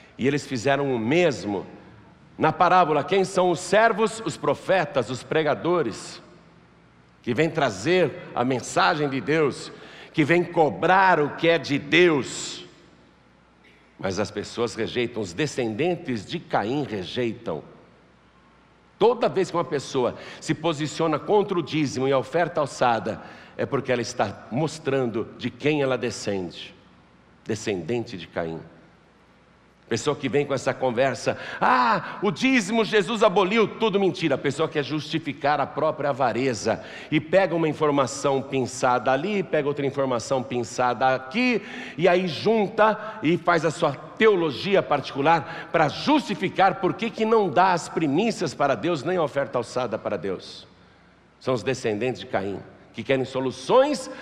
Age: 60-79